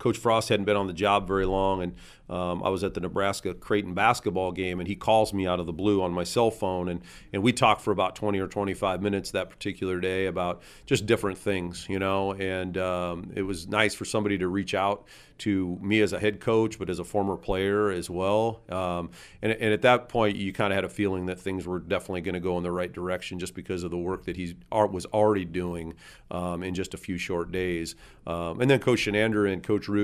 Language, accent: English, American